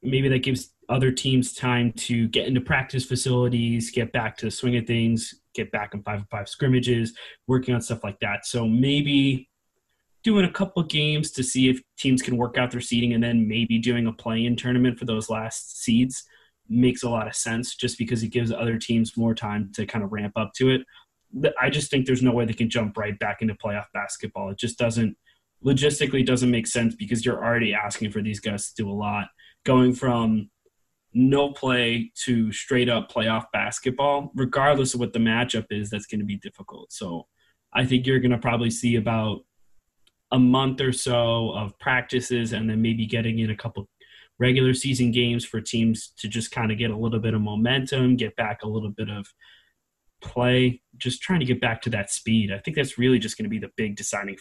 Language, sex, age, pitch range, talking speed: English, male, 20-39, 110-125 Hz, 205 wpm